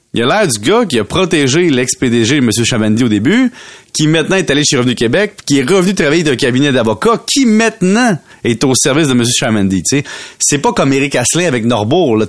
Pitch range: 120-175 Hz